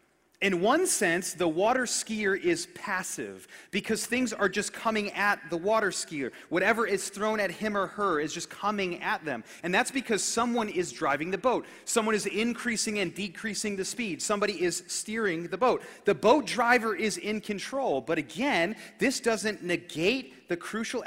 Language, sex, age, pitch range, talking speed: English, male, 30-49, 170-220 Hz, 175 wpm